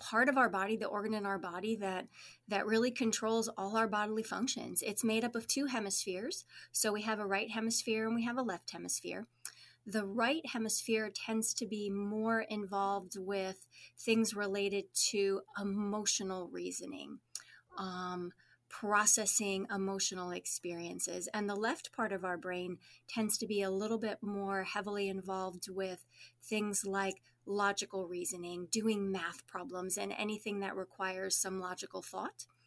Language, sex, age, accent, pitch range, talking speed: English, female, 30-49, American, 195-225 Hz, 155 wpm